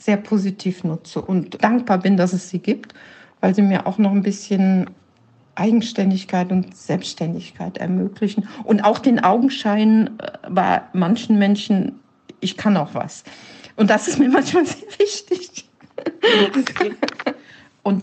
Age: 60-79